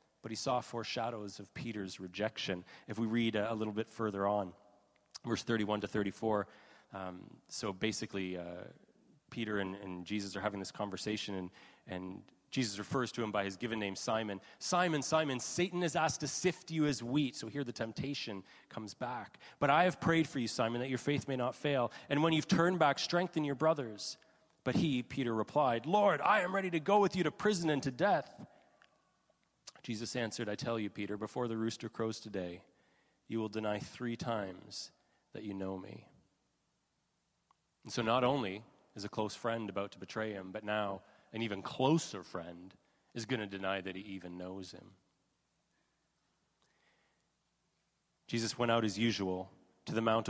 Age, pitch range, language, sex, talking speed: 30-49, 100-140 Hz, English, male, 180 wpm